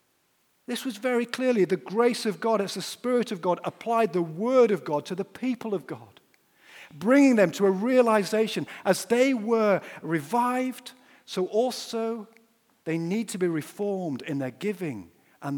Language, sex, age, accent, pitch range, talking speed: English, male, 50-69, British, 150-220 Hz, 165 wpm